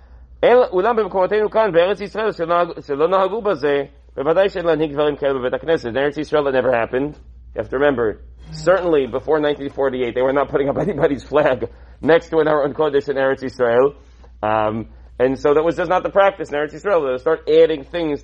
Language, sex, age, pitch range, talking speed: English, male, 40-59, 125-185 Hz, 145 wpm